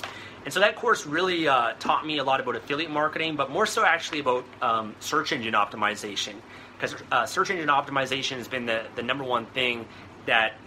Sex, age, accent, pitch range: male, 30-49, American, 115-145 Hz